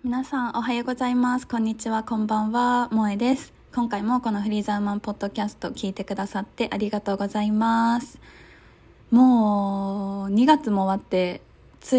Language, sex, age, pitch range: Japanese, female, 20-39, 195-240 Hz